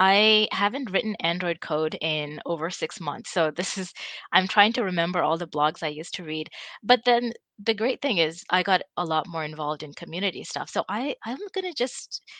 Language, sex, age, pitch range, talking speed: English, female, 20-39, 165-220 Hz, 210 wpm